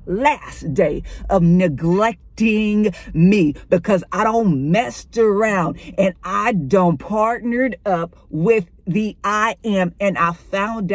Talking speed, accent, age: 120 wpm, American, 50-69